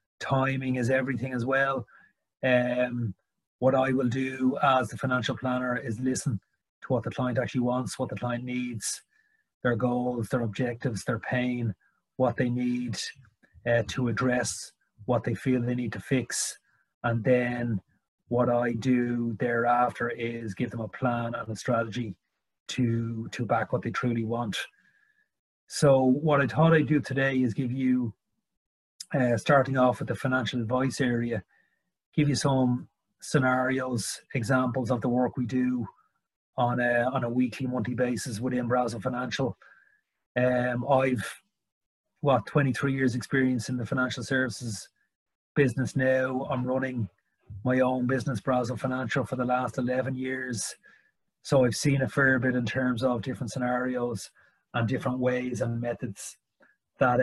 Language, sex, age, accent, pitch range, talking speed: English, male, 30-49, Irish, 120-130 Hz, 150 wpm